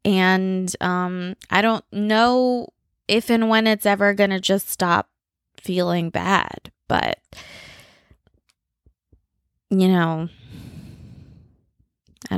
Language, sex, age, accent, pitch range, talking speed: English, female, 20-39, American, 180-220 Hz, 95 wpm